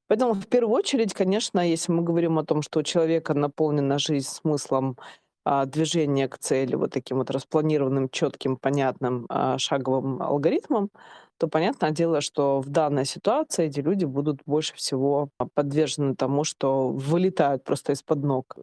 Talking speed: 150 wpm